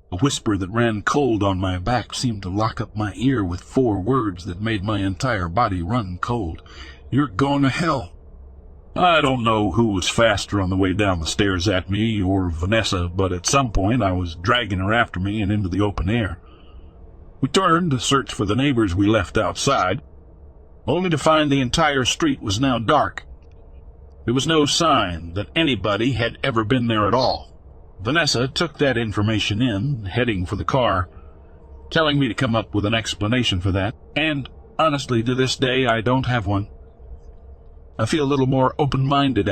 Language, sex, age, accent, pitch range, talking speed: English, male, 60-79, American, 90-130 Hz, 190 wpm